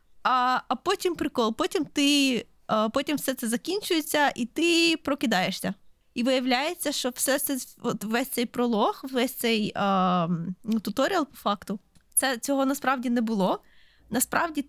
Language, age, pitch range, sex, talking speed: Ukrainian, 20-39, 230-290 Hz, female, 135 wpm